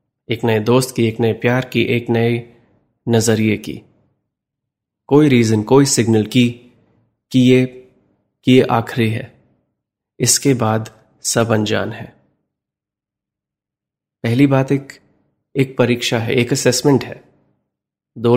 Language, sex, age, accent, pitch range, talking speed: Hindi, male, 30-49, native, 115-130 Hz, 125 wpm